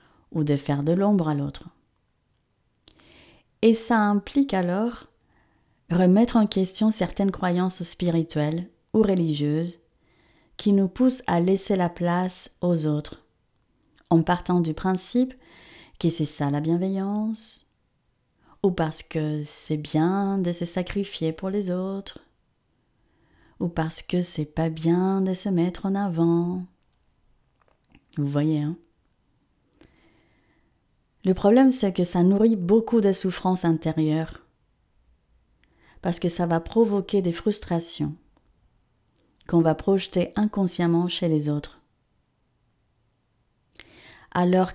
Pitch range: 160-195 Hz